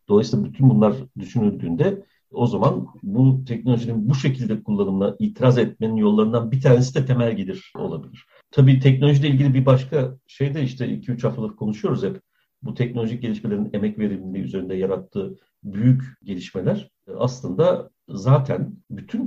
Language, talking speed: Turkish, 135 wpm